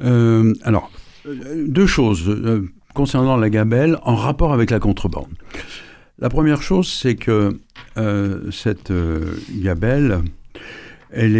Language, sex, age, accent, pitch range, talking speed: French, male, 60-79, French, 100-135 Hz, 120 wpm